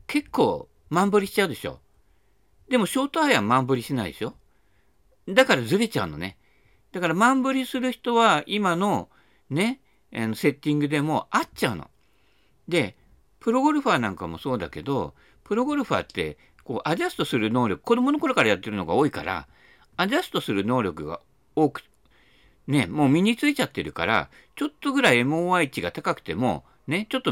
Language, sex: Japanese, male